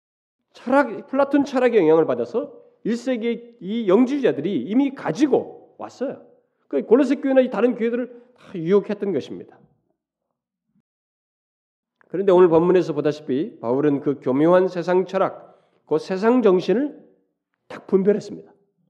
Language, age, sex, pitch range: Korean, 40-59, male, 165-230 Hz